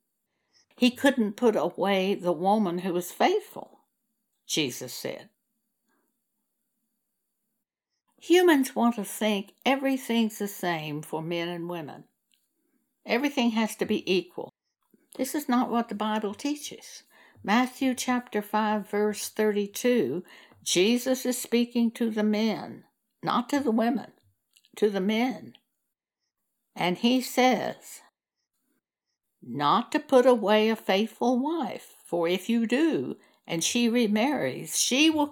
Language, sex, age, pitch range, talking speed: English, female, 60-79, 195-250 Hz, 120 wpm